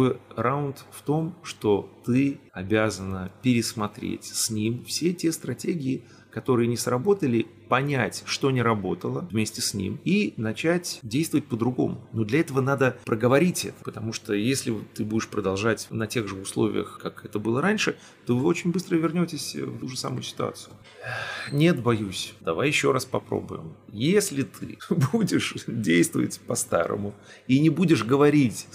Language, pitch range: Russian, 110-155 Hz